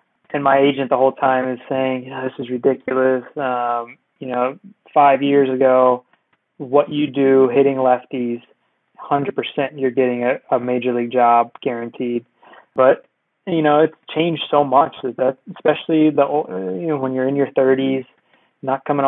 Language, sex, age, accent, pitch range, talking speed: English, male, 20-39, American, 125-140 Hz, 175 wpm